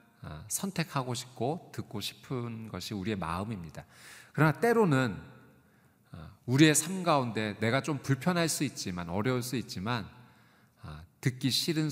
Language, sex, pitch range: Korean, male, 105-140 Hz